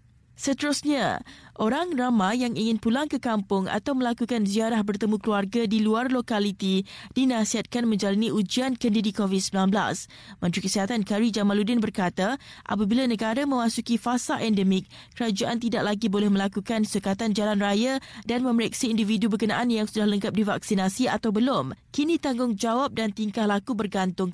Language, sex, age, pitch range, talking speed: Malay, female, 20-39, 200-240 Hz, 135 wpm